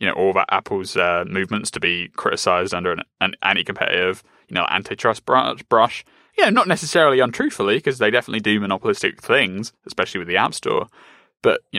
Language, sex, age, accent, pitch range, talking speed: English, male, 20-39, British, 105-155 Hz, 185 wpm